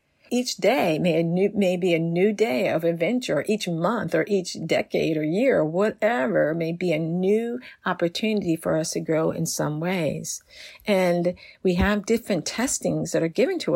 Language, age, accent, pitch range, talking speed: English, 50-69, American, 160-215 Hz, 170 wpm